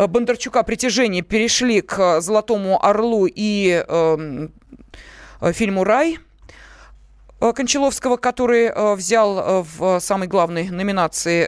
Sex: female